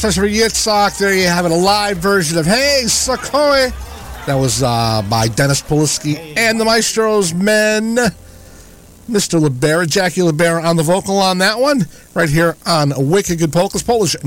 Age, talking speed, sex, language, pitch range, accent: 50-69, 160 wpm, male, English, 120-185 Hz, American